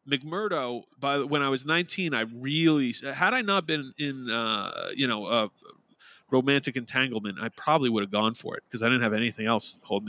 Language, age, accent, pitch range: English, 30-49, American, 125-185 Hz